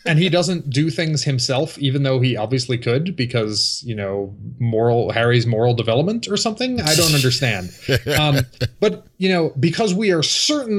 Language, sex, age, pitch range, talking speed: English, male, 30-49, 115-165 Hz, 170 wpm